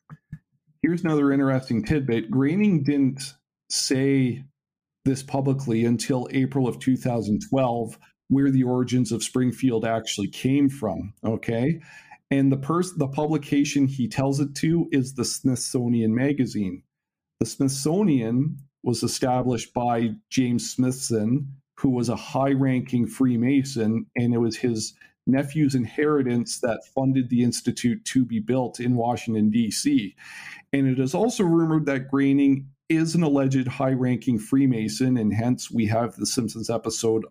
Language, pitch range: English, 120-140 Hz